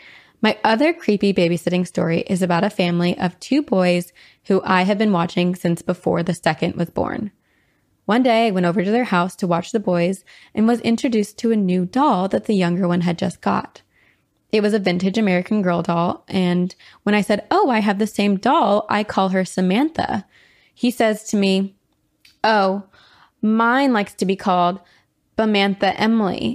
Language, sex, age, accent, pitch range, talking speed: English, female, 20-39, American, 180-220 Hz, 185 wpm